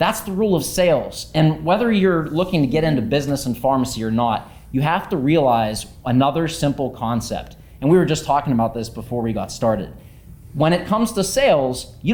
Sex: male